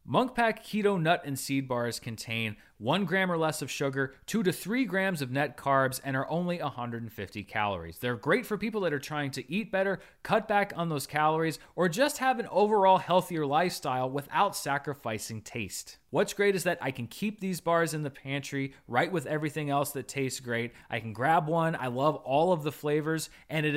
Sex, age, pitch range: male, 30-49, 125-180 Hz